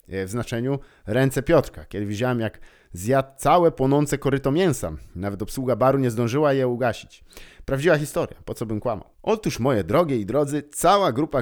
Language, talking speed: Polish, 170 wpm